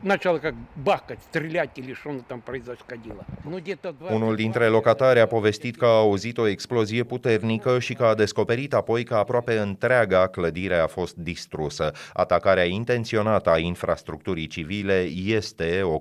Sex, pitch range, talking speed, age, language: male, 90-115 Hz, 110 wpm, 30-49, Romanian